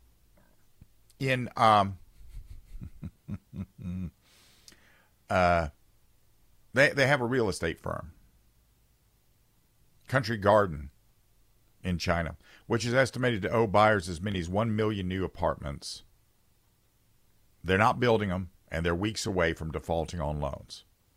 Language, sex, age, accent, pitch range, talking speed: English, male, 50-69, American, 85-110 Hz, 110 wpm